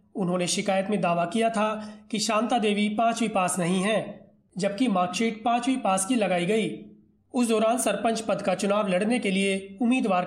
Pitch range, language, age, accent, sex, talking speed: 195-230 Hz, Hindi, 30-49, native, male, 135 wpm